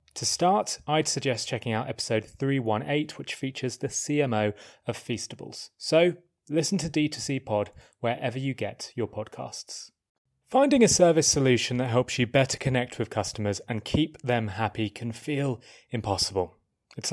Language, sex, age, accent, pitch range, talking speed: English, male, 30-49, British, 110-145 Hz, 150 wpm